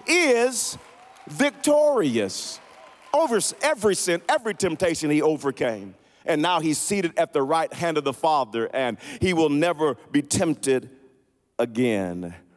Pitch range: 105-150 Hz